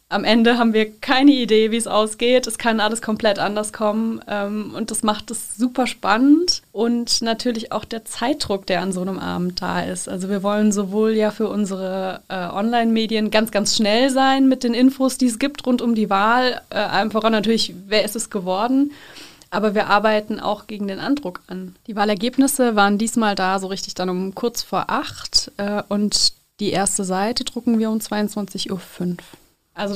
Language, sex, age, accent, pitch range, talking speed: German, female, 20-39, German, 195-235 Hz, 190 wpm